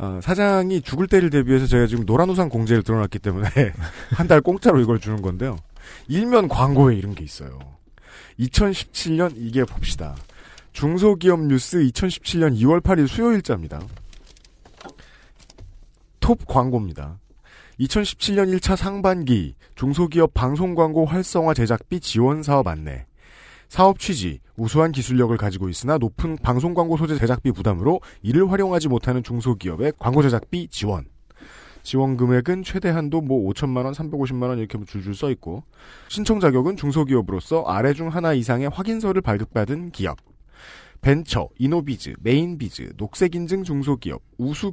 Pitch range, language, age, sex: 105-170 Hz, Korean, 40-59, male